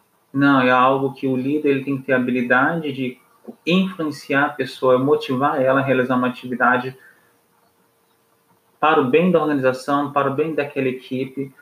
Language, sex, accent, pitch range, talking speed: Portuguese, male, Brazilian, 130-150 Hz, 165 wpm